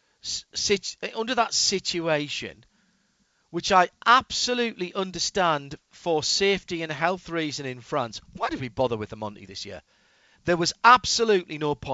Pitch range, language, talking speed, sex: 130-185 Hz, English, 135 wpm, male